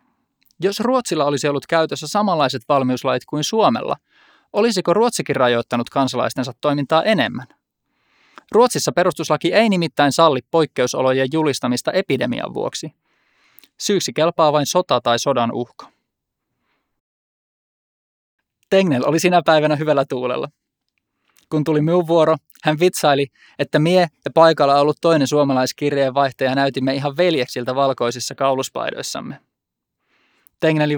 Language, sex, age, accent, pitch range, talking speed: Finnish, male, 20-39, native, 130-165 Hz, 110 wpm